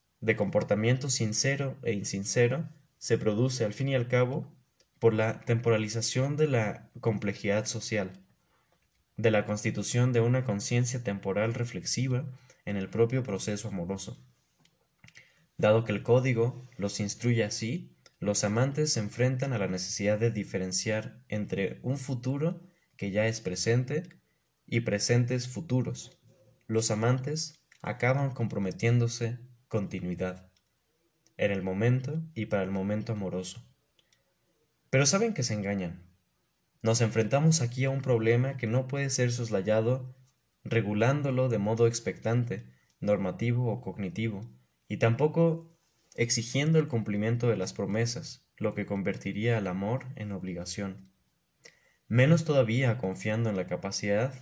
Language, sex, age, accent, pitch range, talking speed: Spanish, male, 20-39, Mexican, 105-130 Hz, 125 wpm